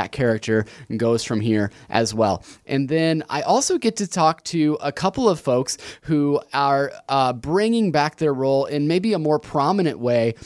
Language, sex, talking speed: English, male, 185 wpm